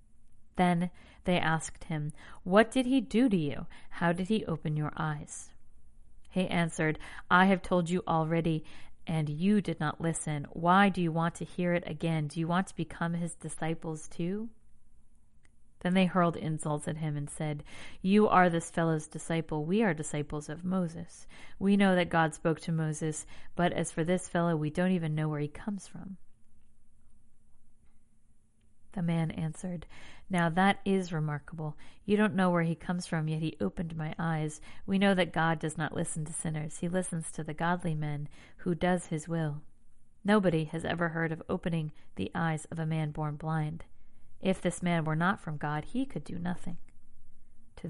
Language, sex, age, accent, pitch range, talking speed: English, female, 40-59, American, 155-180 Hz, 180 wpm